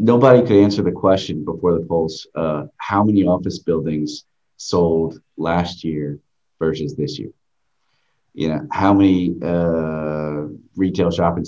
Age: 30-49